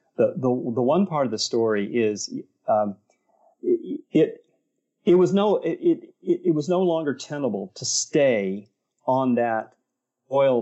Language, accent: English, American